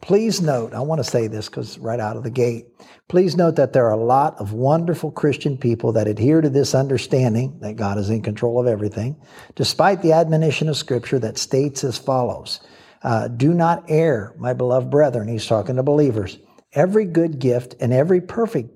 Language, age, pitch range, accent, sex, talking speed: English, 60-79, 120-155 Hz, American, male, 200 wpm